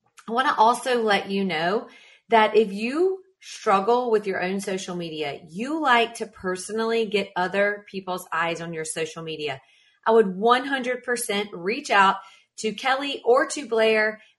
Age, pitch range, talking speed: 30-49, 185-240 Hz, 160 wpm